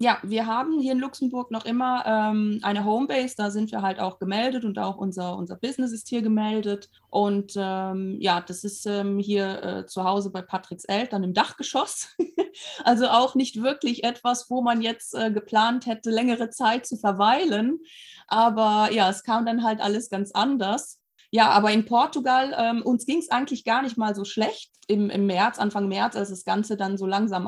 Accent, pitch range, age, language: German, 195-230 Hz, 20-39, German